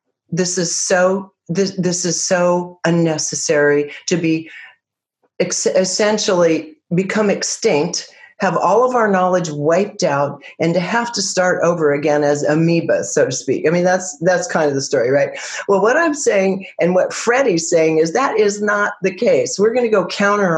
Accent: American